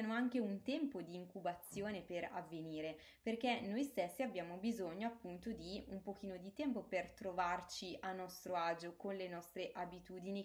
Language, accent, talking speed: Italian, native, 155 wpm